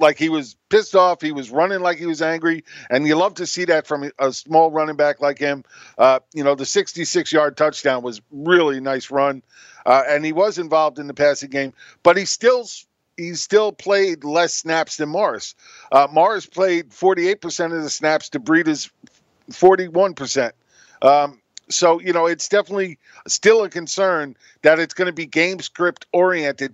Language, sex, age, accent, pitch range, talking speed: English, male, 50-69, American, 150-185 Hz, 185 wpm